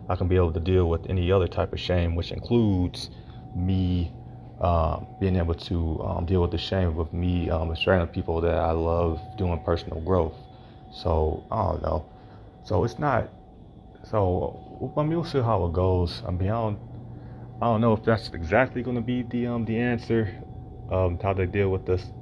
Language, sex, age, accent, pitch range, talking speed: English, male, 30-49, American, 85-110 Hz, 200 wpm